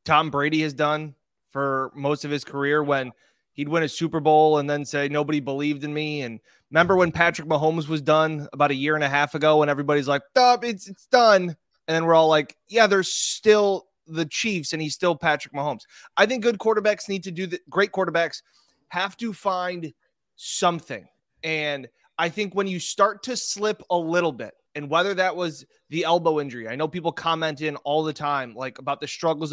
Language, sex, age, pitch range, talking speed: English, male, 20-39, 145-185 Hz, 205 wpm